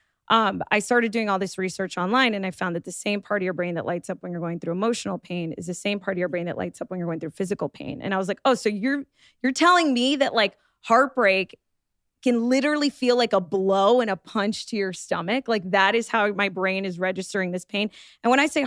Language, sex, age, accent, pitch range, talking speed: English, female, 20-39, American, 190-240 Hz, 265 wpm